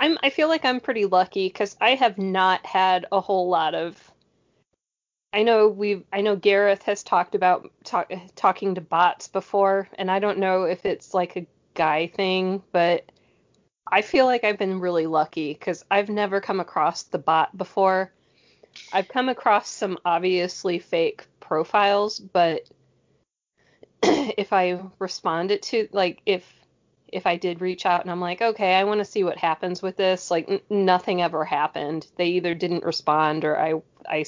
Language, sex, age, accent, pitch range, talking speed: English, female, 20-39, American, 175-205 Hz, 170 wpm